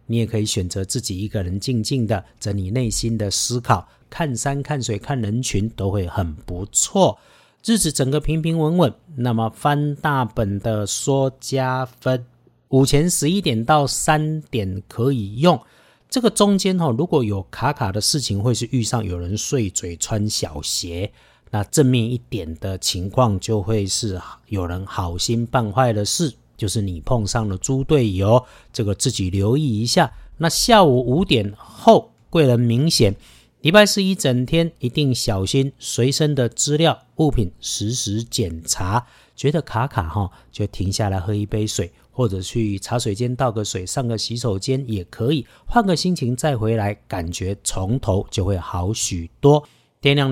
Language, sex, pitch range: Chinese, male, 105-140 Hz